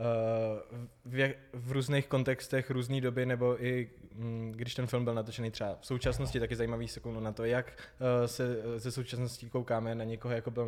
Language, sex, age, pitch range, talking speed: Czech, male, 20-39, 115-130 Hz, 165 wpm